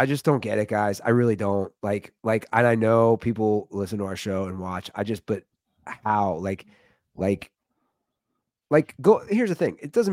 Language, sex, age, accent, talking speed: English, male, 30-49, American, 200 wpm